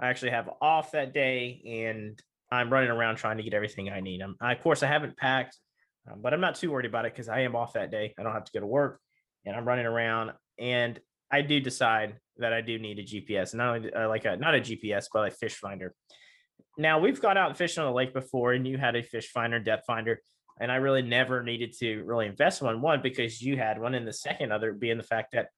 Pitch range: 115-140 Hz